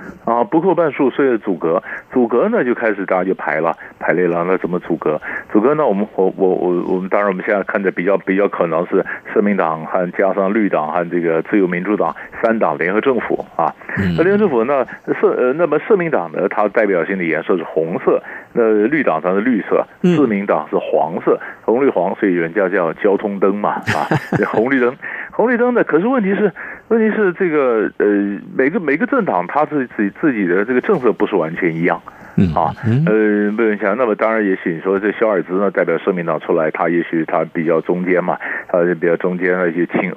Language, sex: Chinese, male